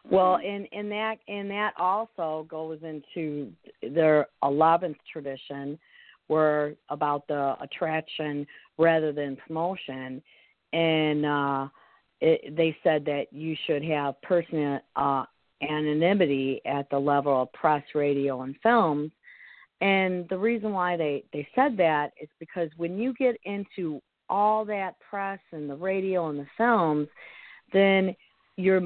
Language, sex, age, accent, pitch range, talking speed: English, female, 50-69, American, 145-190 Hz, 135 wpm